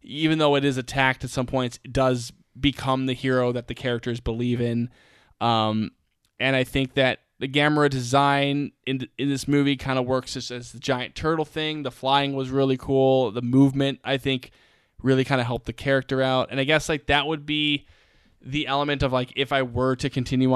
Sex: male